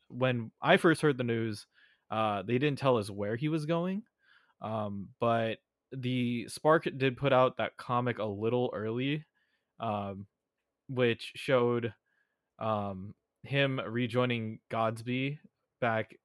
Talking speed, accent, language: 130 wpm, American, English